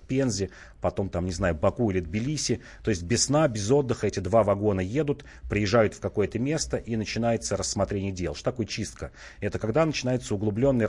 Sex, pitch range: male, 95-115 Hz